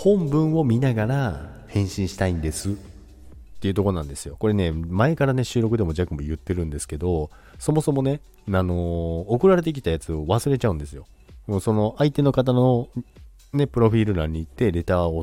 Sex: male